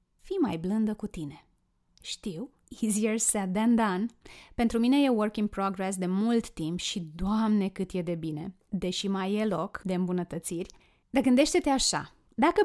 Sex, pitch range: female, 185-245 Hz